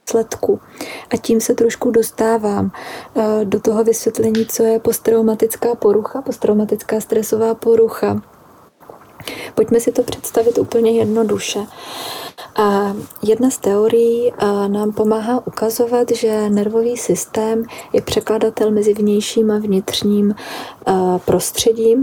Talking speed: 100 wpm